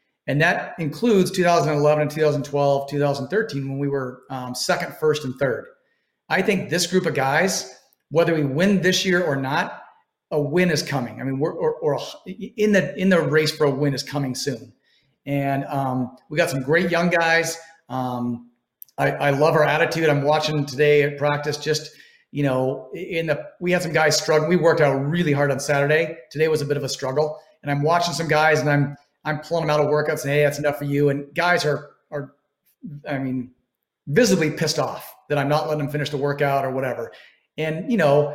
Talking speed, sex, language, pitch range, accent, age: 205 wpm, male, English, 140-170 Hz, American, 40-59